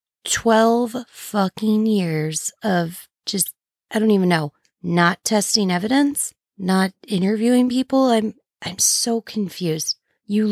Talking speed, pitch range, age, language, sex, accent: 115 wpm, 180-230 Hz, 20-39, English, female, American